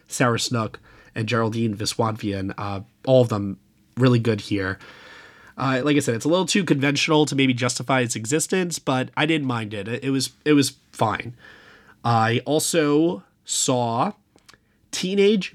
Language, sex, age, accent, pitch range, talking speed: English, male, 30-49, American, 115-145 Hz, 155 wpm